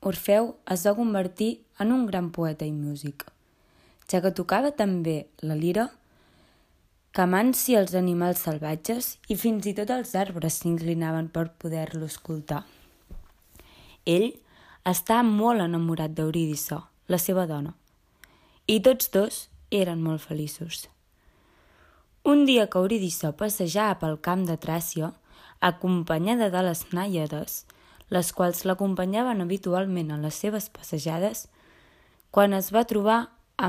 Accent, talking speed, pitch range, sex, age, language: Spanish, 125 wpm, 160-205 Hz, female, 20-39, Spanish